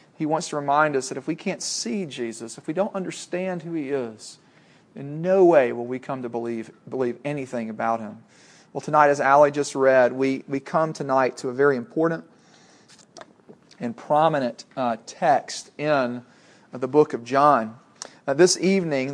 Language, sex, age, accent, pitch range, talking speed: English, male, 40-59, American, 135-160 Hz, 180 wpm